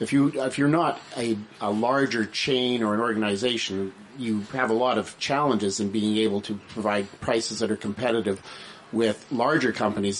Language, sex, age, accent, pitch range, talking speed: English, male, 40-59, American, 105-125 Hz, 175 wpm